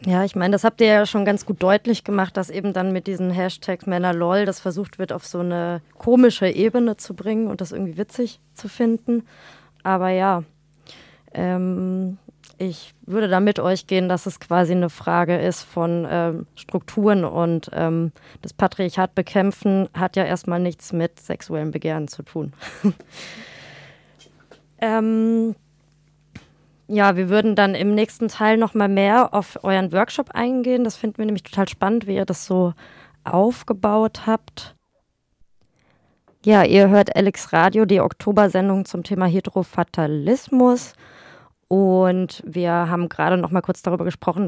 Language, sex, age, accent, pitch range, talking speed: German, female, 20-39, German, 180-210 Hz, 150 wpm